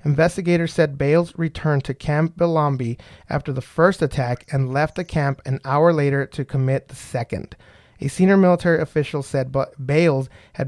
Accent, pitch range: American, 135-160 Hz